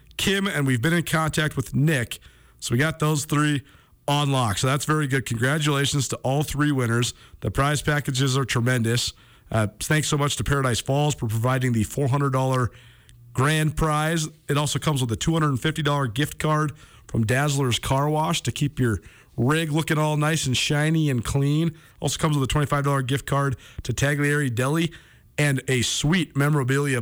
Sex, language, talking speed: male, English, 175 wpm